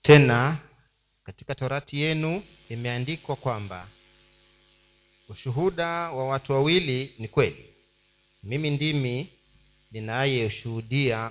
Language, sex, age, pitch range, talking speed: Swahili, male, 40-59, 120-155 Hz, 80 wpm